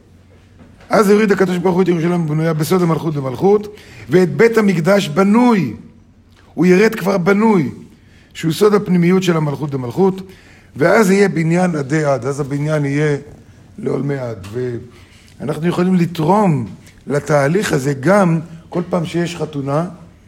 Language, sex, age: Hebrew, male, 50-69